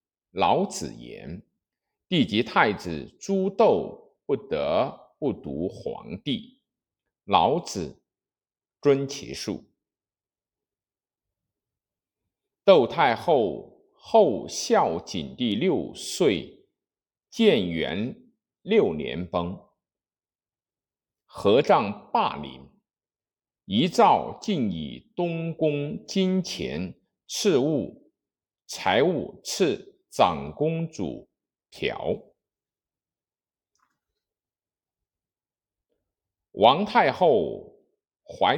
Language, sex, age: Chinese, male, 50-69